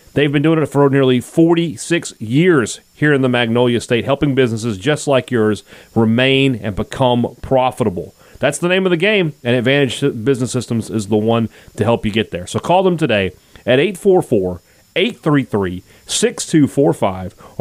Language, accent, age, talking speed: English, American, 30-49, 155 wpm